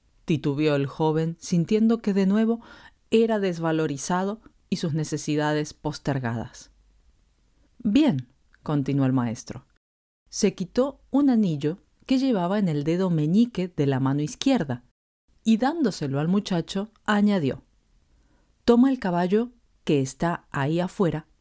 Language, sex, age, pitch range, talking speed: Spanish, female, 40-59, 150-225 Hz, 120 wpm